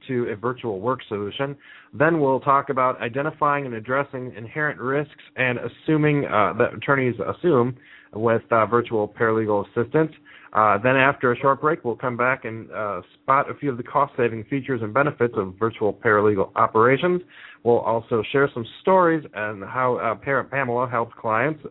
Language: English